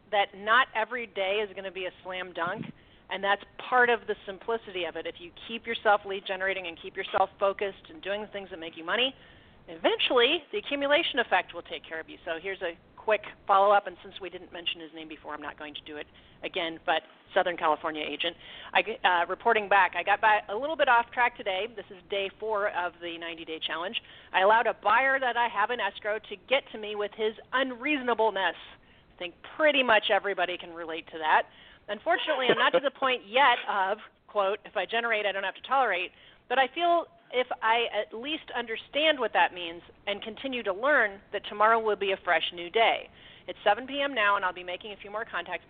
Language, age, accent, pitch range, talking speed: English, 40-59, American, 180-235 Hz, 215 wpm